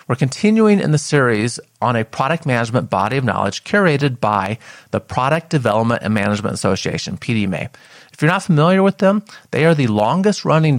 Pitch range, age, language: 115-155 Hz, 30-49, English